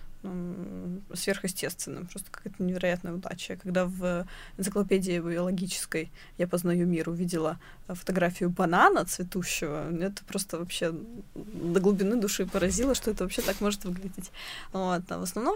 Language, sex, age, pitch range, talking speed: Russian, female, 20-39, 175-205 Hz, 135 wpm